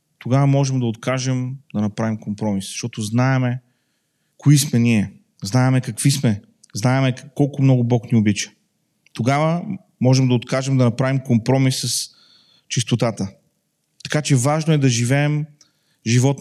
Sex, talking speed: male, 135 wpm